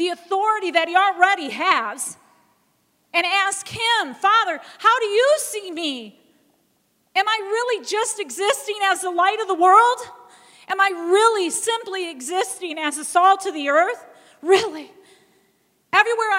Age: 40-59